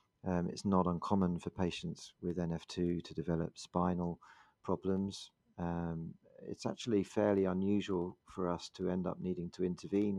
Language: English